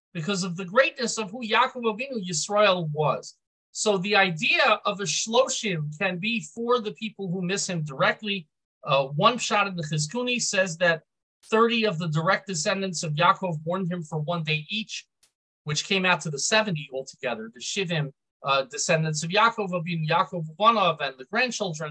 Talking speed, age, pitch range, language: 180 wpm, 40-59, 155-215 Hz, English